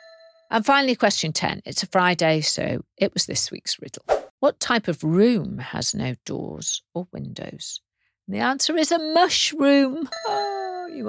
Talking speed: 150 wpm